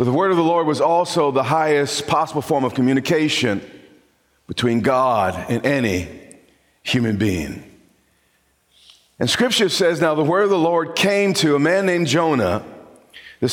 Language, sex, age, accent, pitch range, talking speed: English, male, 40-59, American, 130-165 Hz, 160 wpm